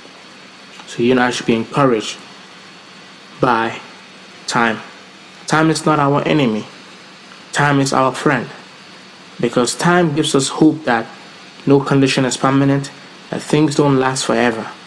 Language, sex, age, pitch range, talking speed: English, male, 20-39, 125-155 Hz, 135 wpm